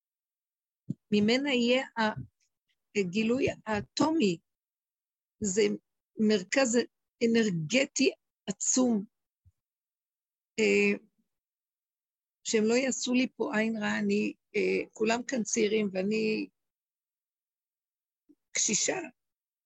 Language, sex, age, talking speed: Hebrew, female, 50-69, 65 wpm